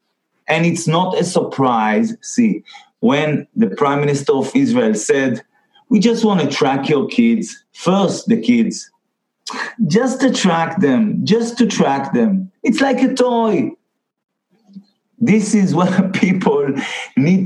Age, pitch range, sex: 50-69, 145-230 Hz, male